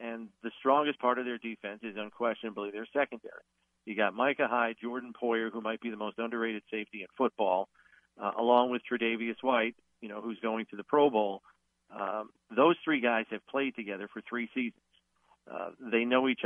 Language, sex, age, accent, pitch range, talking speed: English, male, 50-69, American, 105-130 Hz, 195 wpm